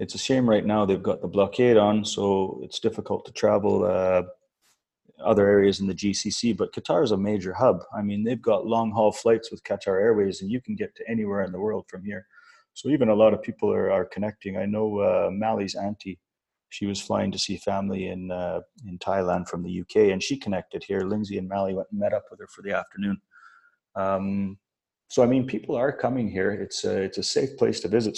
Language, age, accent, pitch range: English, 30-49, Canadian, 95-110 Hz